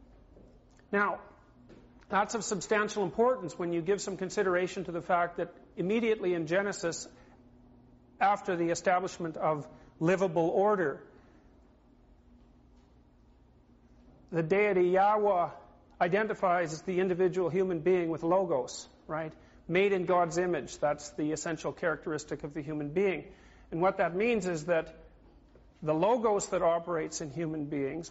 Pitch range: 160-195 Hz